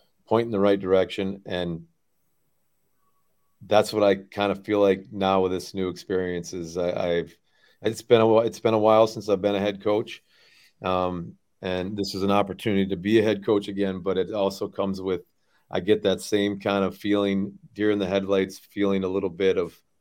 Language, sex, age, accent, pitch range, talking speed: English, male, 40-59, American, 85-100 Hz, 205 wpm